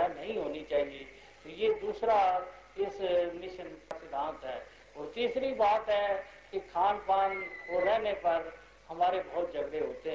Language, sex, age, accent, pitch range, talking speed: Hindi, male, 50-69, native, 175-205 Hz, 140 wpm